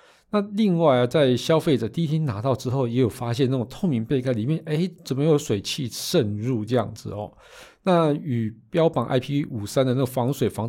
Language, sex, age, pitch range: Chinese, male, 50-69, 115-145 Hz